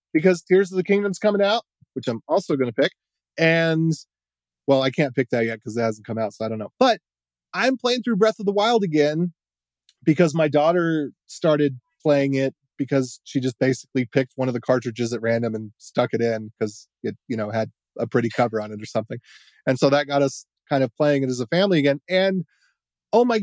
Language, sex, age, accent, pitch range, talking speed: English, male, 30-49, American, 130-195 Hz, 225 wpm